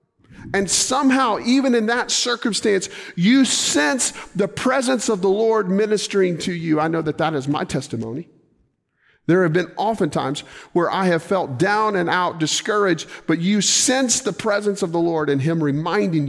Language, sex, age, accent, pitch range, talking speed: English, male, 40-59, American, 150-215 Hz, 170 wpm